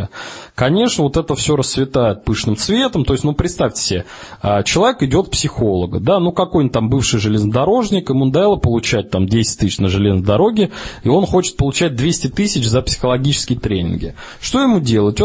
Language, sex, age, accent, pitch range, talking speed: Russian, male, 20-39, native, 115-160 Hz, 165 wpm